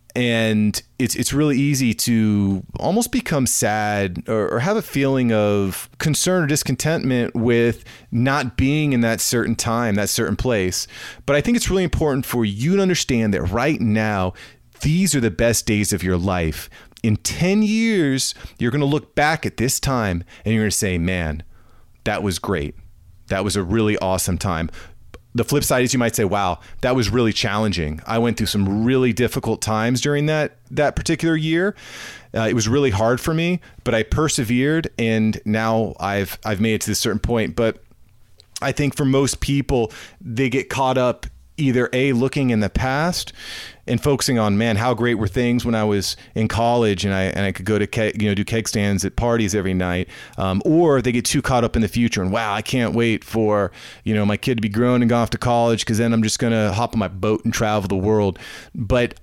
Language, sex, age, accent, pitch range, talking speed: English, male, 30-49, American, 105-130 Hz, 210 wpm